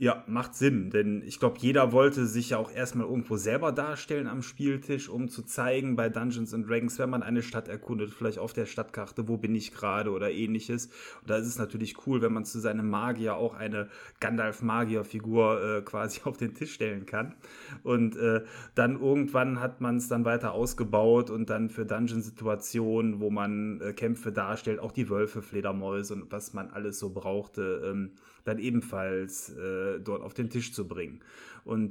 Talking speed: 185 wpm